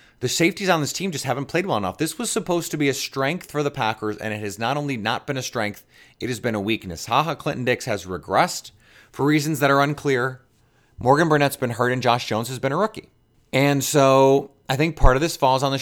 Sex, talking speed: male, 245 wpm